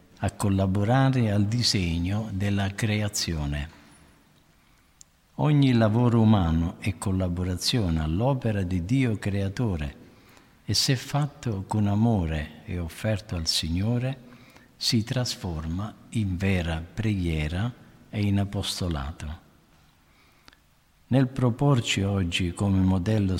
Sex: male